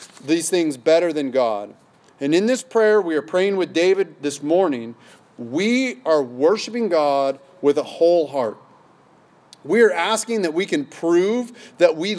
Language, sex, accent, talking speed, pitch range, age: English, male, American, 160 wpm, 150-215 Hz, 30-49